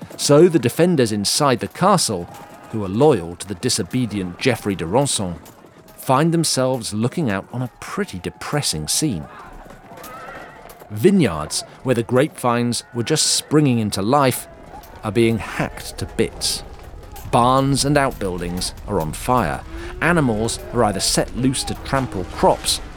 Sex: male